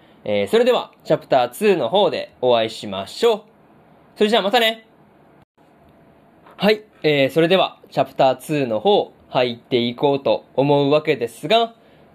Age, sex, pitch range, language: 20-39, male, 140-200 Hz, Japanese